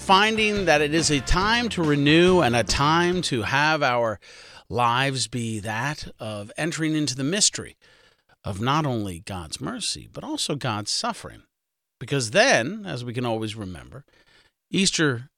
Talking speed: 150 wpm